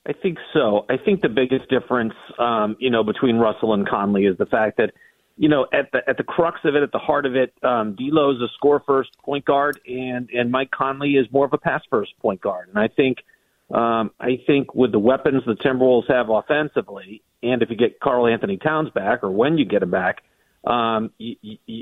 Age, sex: 40-59, male